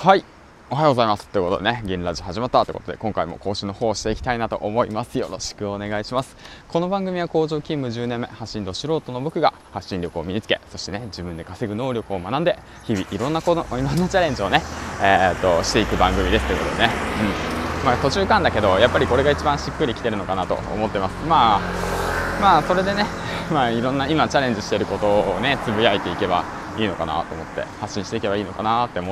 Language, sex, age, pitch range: Japanese, male, 20-39, 100-130 Hz